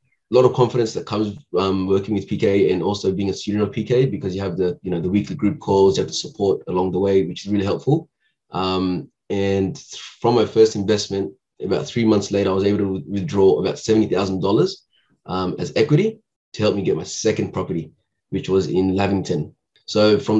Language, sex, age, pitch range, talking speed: English, male, 20-39, 95-110 Hz, 210 wpm